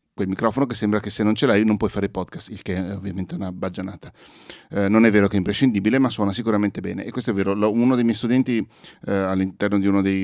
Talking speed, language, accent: 250 wpm, English, Italian